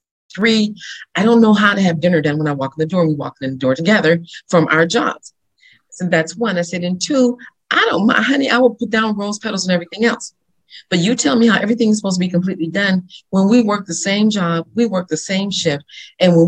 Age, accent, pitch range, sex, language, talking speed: 40-59, American, 165-230 Hz, female, English, 250 wpm